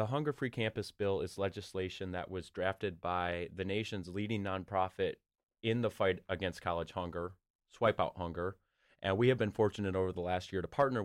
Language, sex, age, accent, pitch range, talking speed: English, male, 30-49, American, 90-110 Hz, 180 wpm